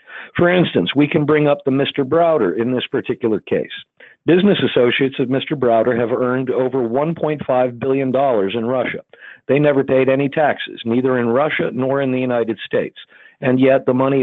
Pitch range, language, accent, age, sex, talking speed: 120-155 Hz, English, American, 50-69, male, 175 wpm